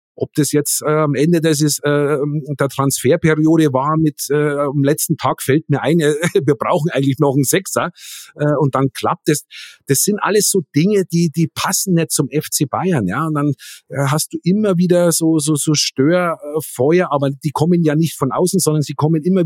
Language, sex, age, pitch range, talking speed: German, male, 50-69, 145-170 Hz, 205 wpm